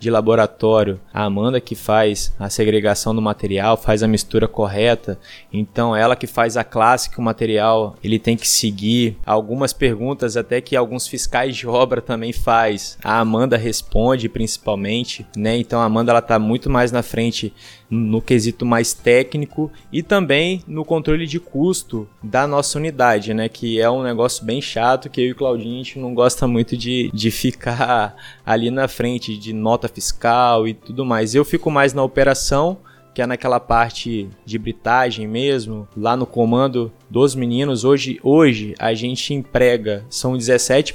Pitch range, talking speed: 110-135 Hz, 170 wpm